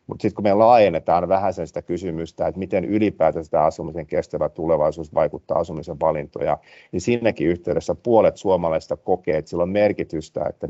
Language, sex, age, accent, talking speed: Finnish, male, 50-69, native, 165 wpm